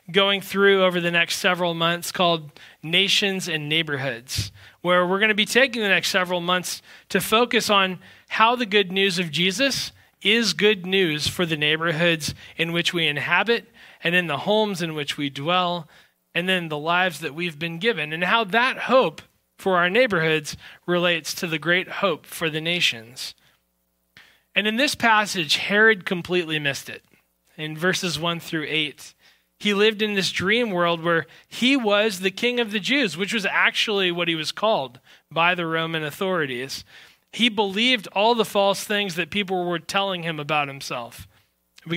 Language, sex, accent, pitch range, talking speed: English, male, American, 165-205 Hz, 175 wpm